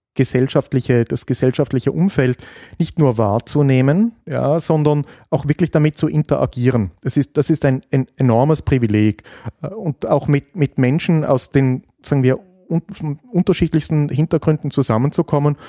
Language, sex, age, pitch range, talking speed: German, male, 30-49, 125-150 Hz, 135 wpm